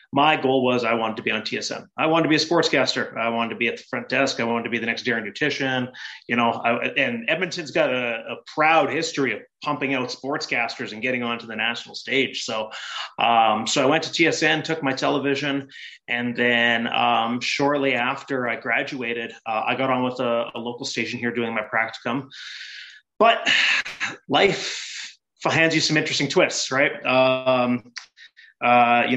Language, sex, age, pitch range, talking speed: English, male, 30-49, 115-135 Hz, 185 wpm